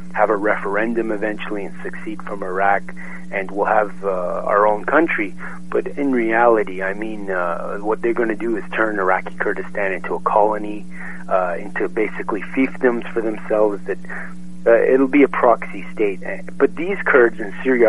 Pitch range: 95-140 Hz